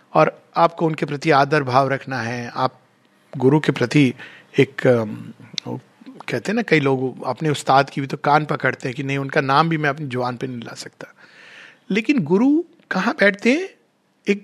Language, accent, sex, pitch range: Hindi, native, male, 145-210 Hz